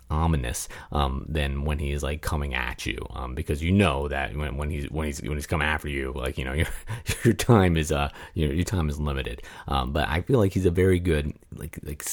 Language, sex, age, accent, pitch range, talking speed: English, male, 30-49, American, 75-85 Hz, 245 wpm